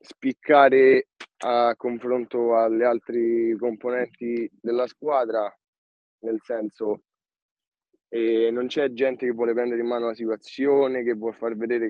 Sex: male